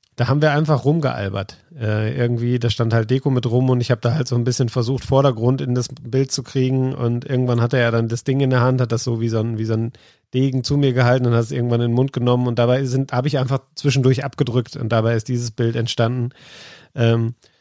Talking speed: 250 wpm